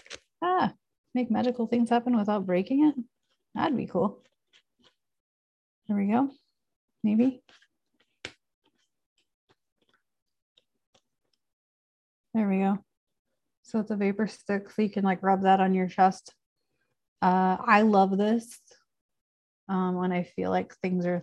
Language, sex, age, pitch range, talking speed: English, female, 30-49, 185-220 Hz, 120 wpm